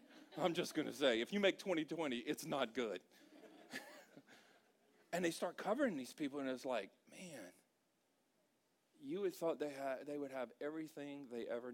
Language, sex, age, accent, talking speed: English, male, 40-59, American, 170 wpm